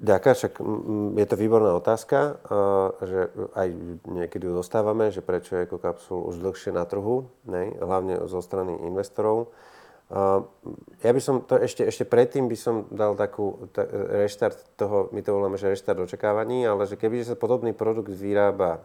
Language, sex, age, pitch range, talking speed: Slovak, male, 30-49, 90-110 Hz, 180 wpm